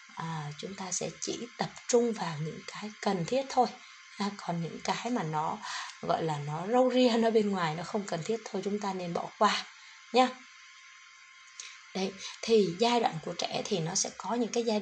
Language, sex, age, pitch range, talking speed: Vietnamese, female, 20-39, 180-240 Hz, 205 wpm